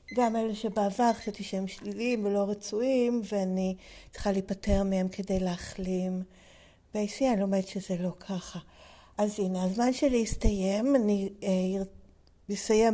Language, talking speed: Hebrew, 110 wpm